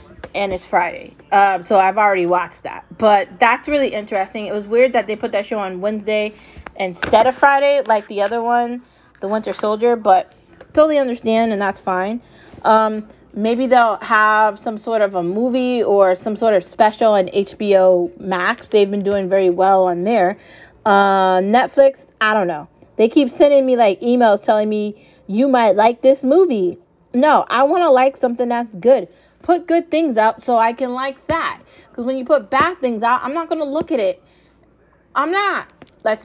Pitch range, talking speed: 200-255 Hz, 190 wpm